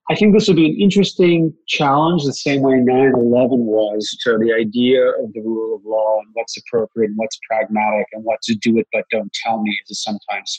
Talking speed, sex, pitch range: 215 wpm, male, 110-125 Hz